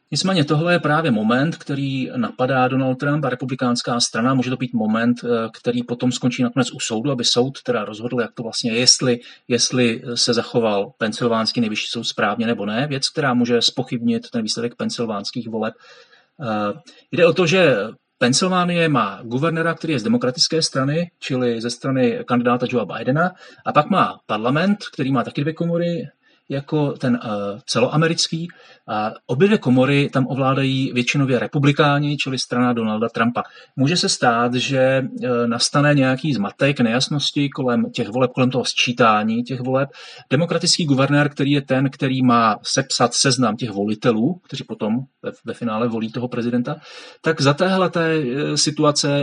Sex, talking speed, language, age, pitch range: male, 150 wpm, Czech, 30-49, 120-150 Hz